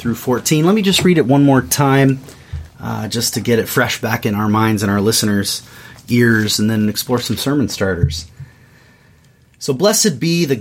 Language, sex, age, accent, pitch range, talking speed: English, male, 30-49, American, 115-140 Hz, 180 wpm